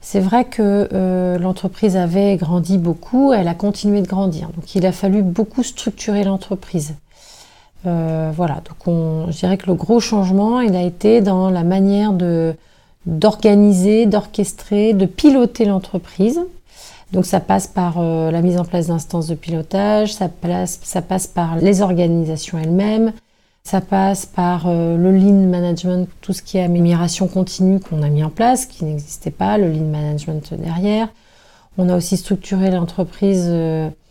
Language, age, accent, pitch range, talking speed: French, 40-59, French, 170-200 Hz, 160 wpm